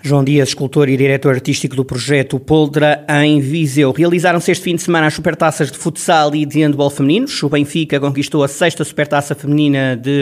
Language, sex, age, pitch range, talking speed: Portuguese, male, 20-39, 145-175 Hz, 190 wpm